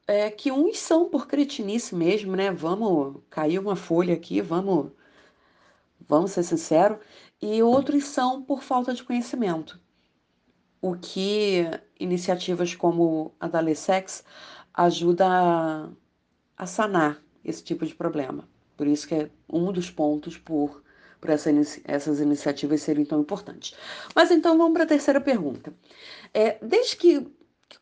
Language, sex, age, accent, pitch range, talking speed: Portuguese, female, 40-59, Brazilian, 165-230 Hz, 130 wpm